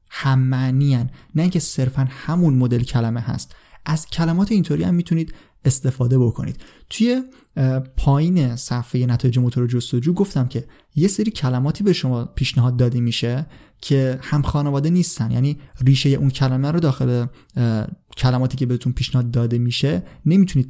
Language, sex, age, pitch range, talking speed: Persian, male, 30-49, 125-165 Hz, 140 wpm